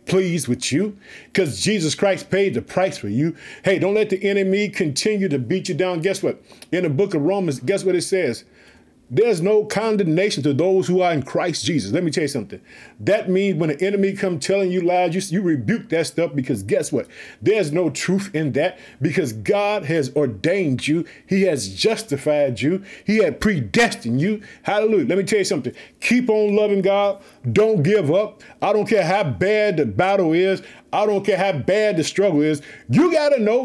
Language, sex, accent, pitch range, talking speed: English, male, American, 160-195 Hz, 205 wpm